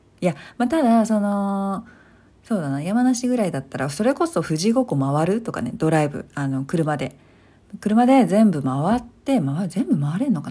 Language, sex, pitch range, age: Japanese, female, 145-215 Hz, 40-59